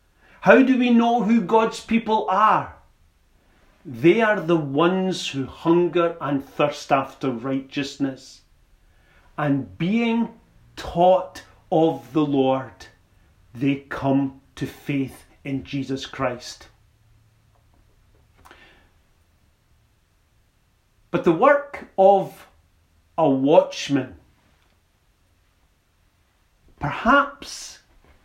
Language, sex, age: English, male, 40-59